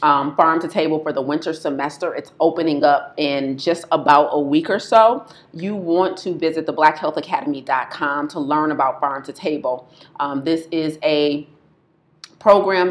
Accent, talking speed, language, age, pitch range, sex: American, 165 wpm, English, 30-49, 150-175 Hz, female